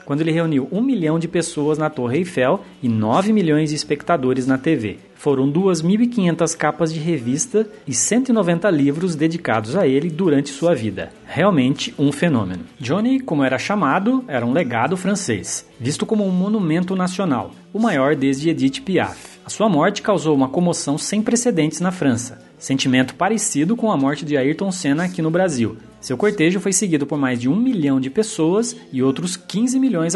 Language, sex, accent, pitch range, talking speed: Portuguese, male, Brazilian, 140-205 Hz, 175 wpm